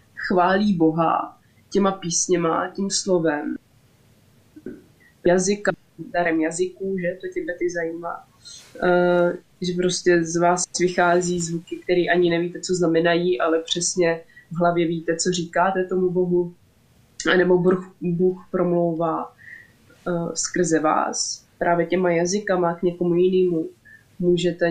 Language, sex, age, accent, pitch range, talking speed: Czech, female, 20-39, native, 165-180 Hz, 120 wpm